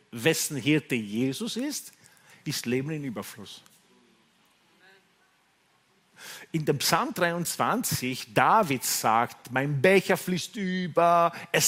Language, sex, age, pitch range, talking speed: German, male, 50-69, 135-195 Hz, 100 wpm